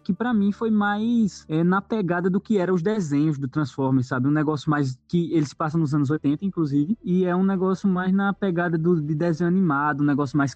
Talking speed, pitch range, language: 225 wpm, 150-200 Hz, Portuguese